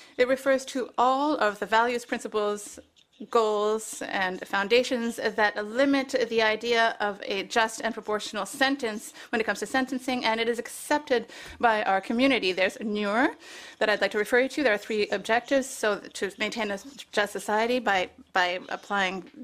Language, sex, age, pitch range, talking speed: English, female, 30-49, 210-270 Hz, 170 wpm